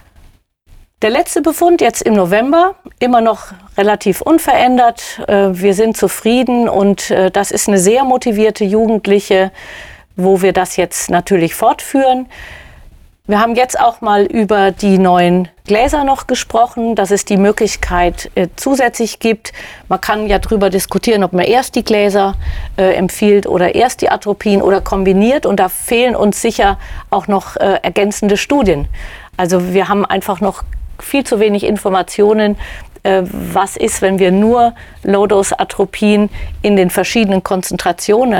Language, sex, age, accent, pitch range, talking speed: German, female, 40-59, German, 185-225 Hz, 140 wpm